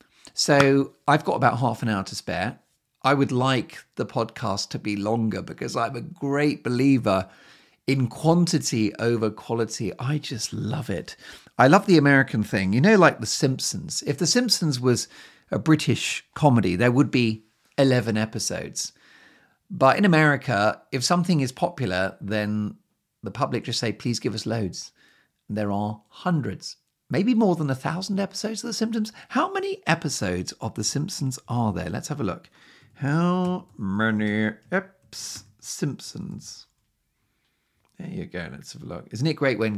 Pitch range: 110-155 Hz